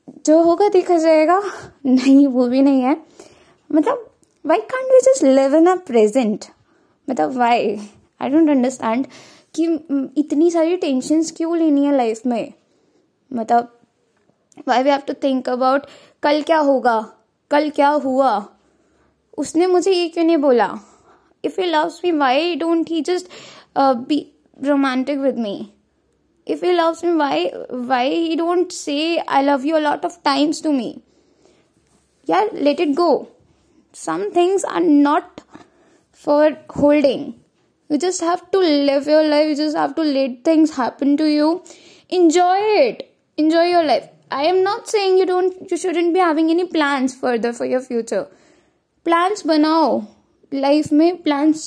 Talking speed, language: 150 wpm, Hindi